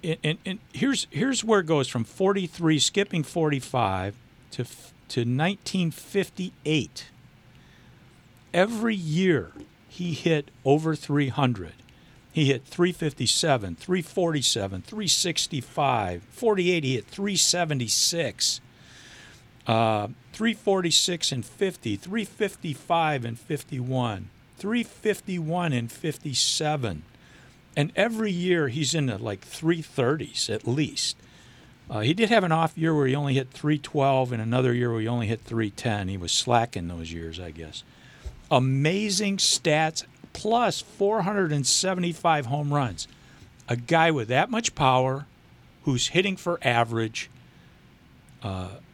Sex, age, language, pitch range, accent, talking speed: male, 50-69, English, 125-185 Hz, American, 115 wpm